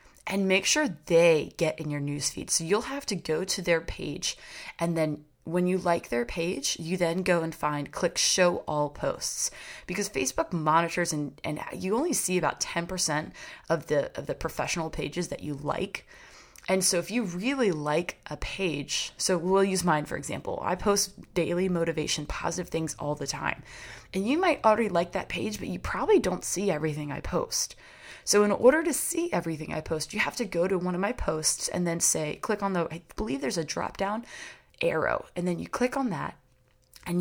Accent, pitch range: American, 165-205 Hz